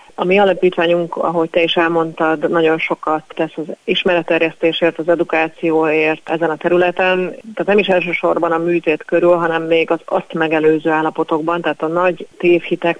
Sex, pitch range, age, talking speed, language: female, 160-175 Hz, 30-49, 155 wpm, Hungarian